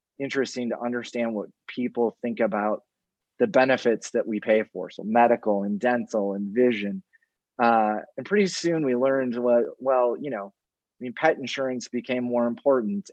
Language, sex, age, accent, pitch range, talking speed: English, male, 30-49, American, 105-125 Hz, 165 wpm